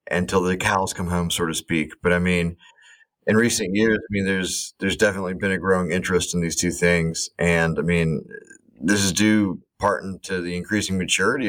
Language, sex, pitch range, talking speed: English, male, 85-95 Hz, 200 wpm